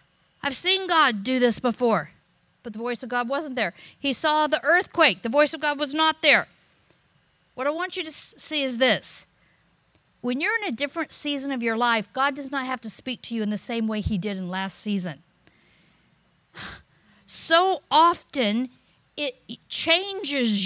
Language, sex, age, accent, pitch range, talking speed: English, female, 50-69, American, 210-280 Hz, 180 wpm